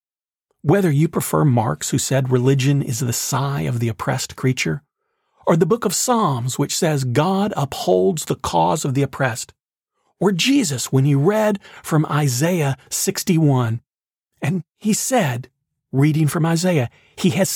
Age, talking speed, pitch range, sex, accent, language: 40-59, 150 wpm, 125-175 Hz, male, American, English